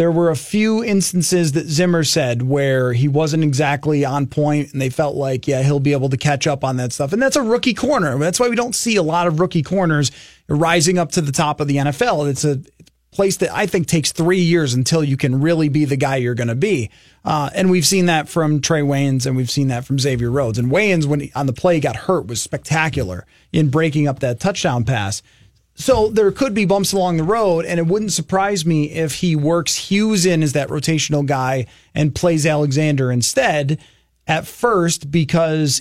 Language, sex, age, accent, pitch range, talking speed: English, male, 30-49, American, 140-180 Hz, 220 wpm